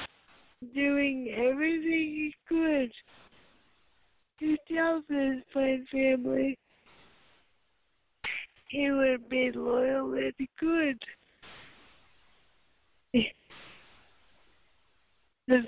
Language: English